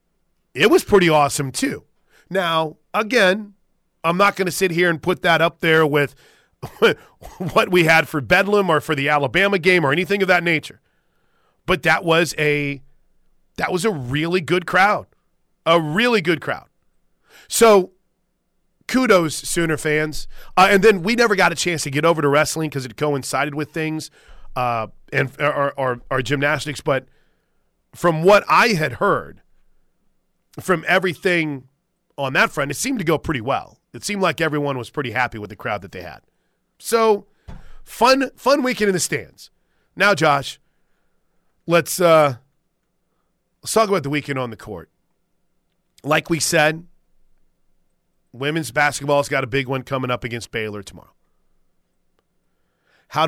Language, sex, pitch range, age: English, male, 145-180 Hz, 40-59